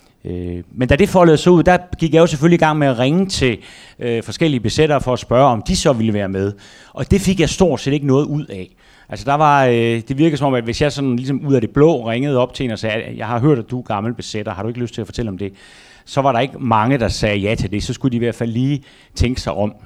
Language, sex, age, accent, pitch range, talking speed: Danish, male, 30-49, native, 110-140 Hz, 300 wpm